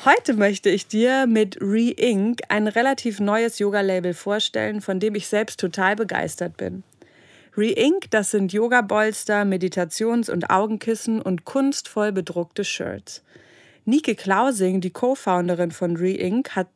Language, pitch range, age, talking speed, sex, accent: German, 185-225 Hz, 30-49, 135 wpm, female, German